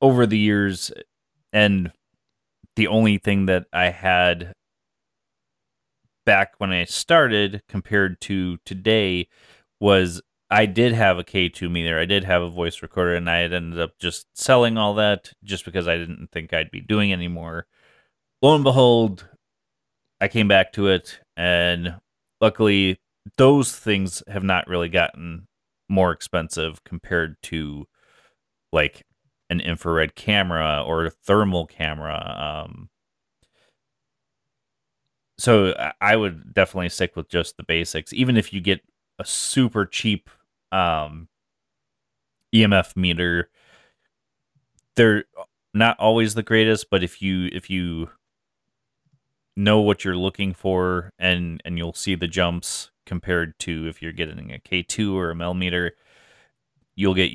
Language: English